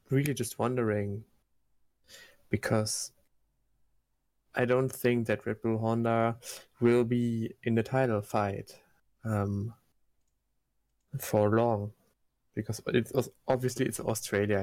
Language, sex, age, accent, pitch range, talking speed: English, male, 20-39, German, 110-130 Hz, 100 wpm